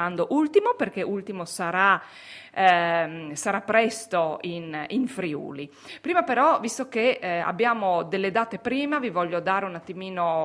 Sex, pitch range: female, 175-245 Hz